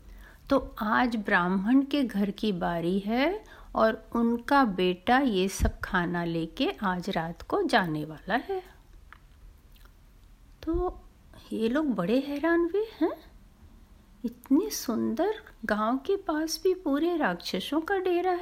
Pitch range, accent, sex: 195-285 Hz, native, female